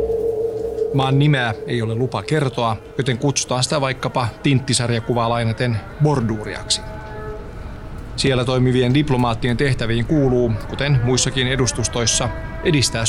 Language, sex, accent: Finnish, male, native